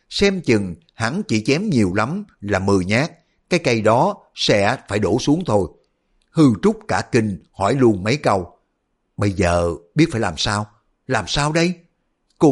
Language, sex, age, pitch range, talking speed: Vietnamese, male, 60-79, 100-150 Hz, 175 wpm